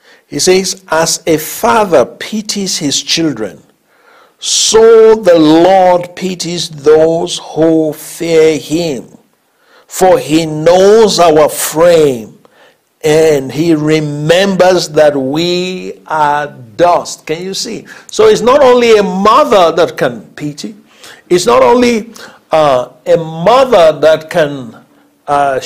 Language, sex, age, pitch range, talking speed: English, male, 60-79, 155-210 Hz, 115 wpm